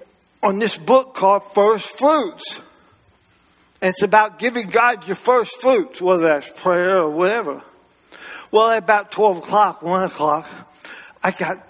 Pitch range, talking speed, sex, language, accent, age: 165-230 Hz, 145 wpm, male, English, American, 60-79